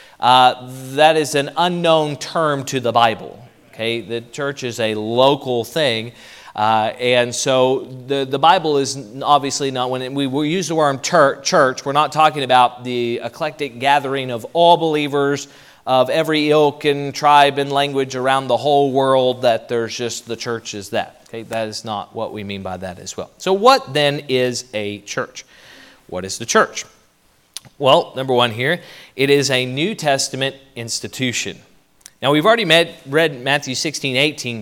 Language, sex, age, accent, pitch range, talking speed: English, male, 40-59, American, 125-160 Hz, 170 wpm